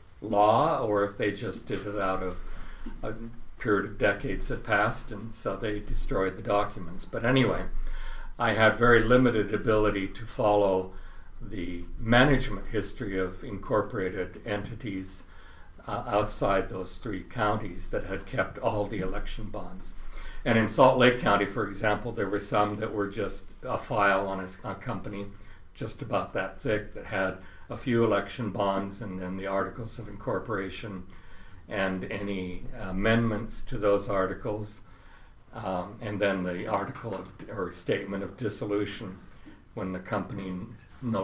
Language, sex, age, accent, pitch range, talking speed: English, male, 60-79, American, 95-115 Hz, 150 wpm